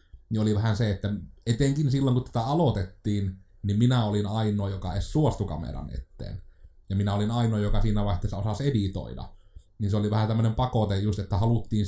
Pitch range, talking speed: 95-115 Hz, 180 wpm